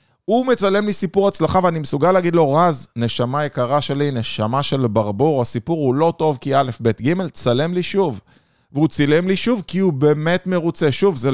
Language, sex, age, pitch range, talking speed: Hebrew, male, 20-39, 125-165 Hz, 180 wpm